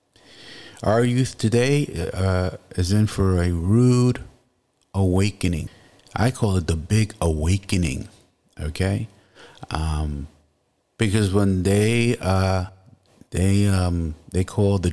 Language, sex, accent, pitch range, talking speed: English, male, American, 90-110 Hz, 110 wpm